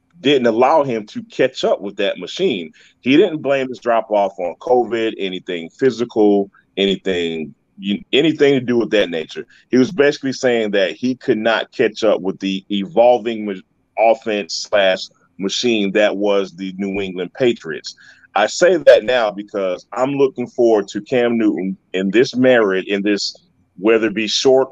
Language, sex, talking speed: English, male, 170 wpm